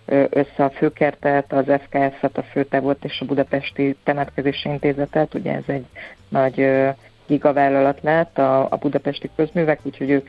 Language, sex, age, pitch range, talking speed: Hungarian, female, 30-49, 140-150 Hz, 135 wpm